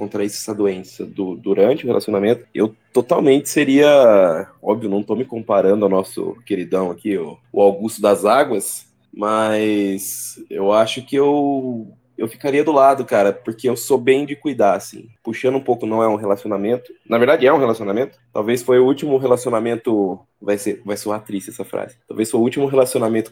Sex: male